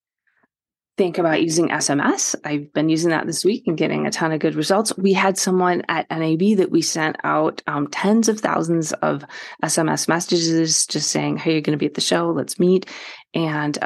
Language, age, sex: English, 30-49, female